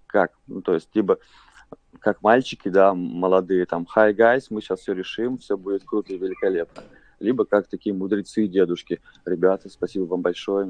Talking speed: 170 wpm